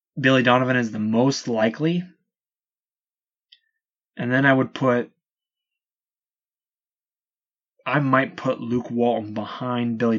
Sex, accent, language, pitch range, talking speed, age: male, American, English, 115-155 Hz, 105 wpm, 20-39